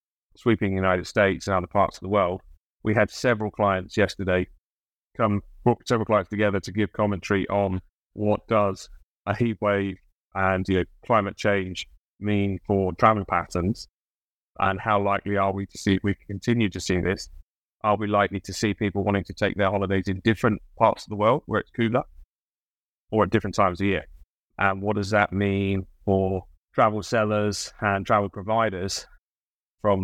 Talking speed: 175 wpm